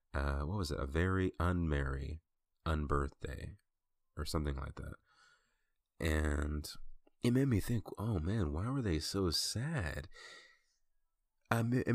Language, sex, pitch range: English, male, 75-100 Hz